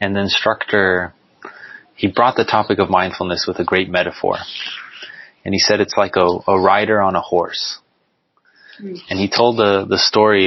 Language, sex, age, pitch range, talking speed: English, male, 20-39, 95-115 Hz, 170 wpm